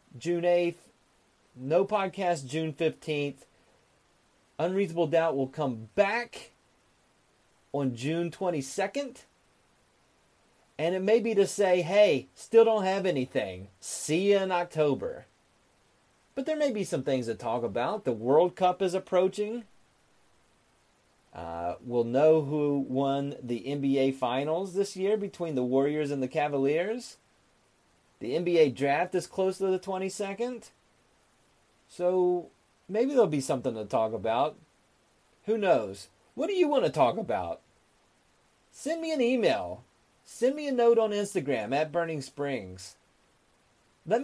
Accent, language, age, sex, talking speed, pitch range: American, English, 30-49, male, 135 wpm, 135-210 Hz